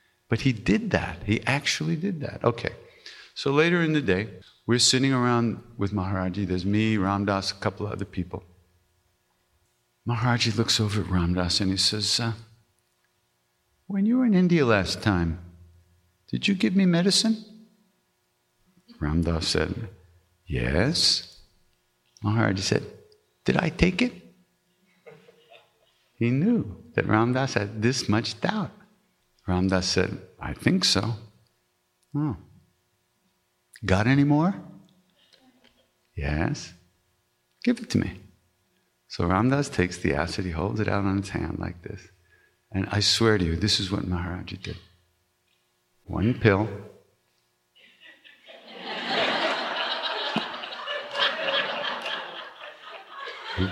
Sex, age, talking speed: male, 50-69, 120 wpm